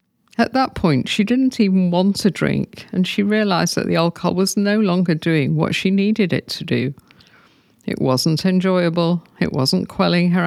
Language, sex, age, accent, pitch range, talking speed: English, female, 50-69, British, 155-205 Hz, 185 wpm